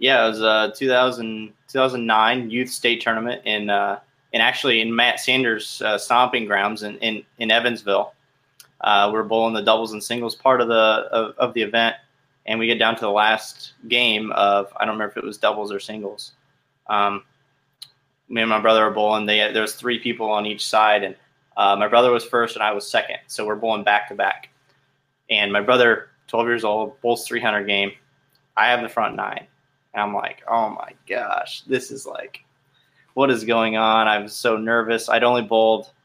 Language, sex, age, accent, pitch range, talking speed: English, male, 20-39, American, 105-125 Hz, 200 wpm